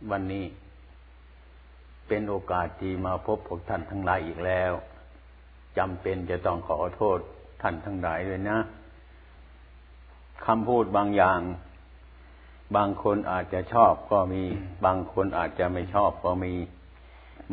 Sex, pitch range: male, 65-100 Hz